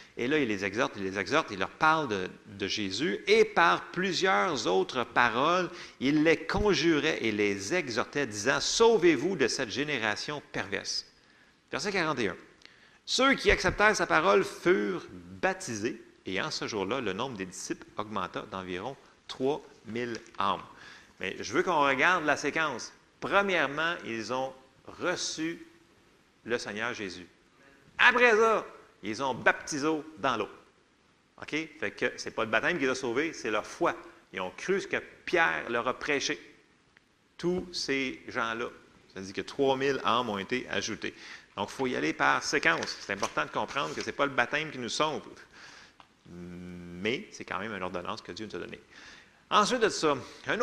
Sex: male